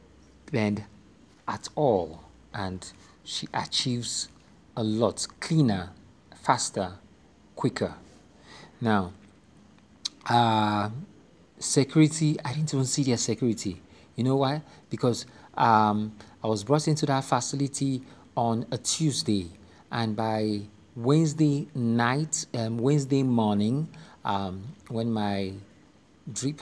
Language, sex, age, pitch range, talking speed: English, male, 50-69, 105-135 Hz, 100 wpm